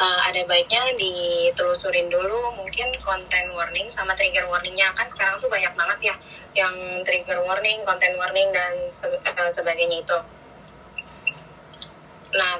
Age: 20-39